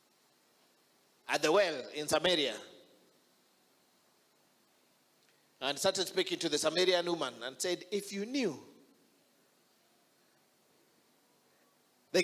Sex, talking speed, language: male, 90 wpm, English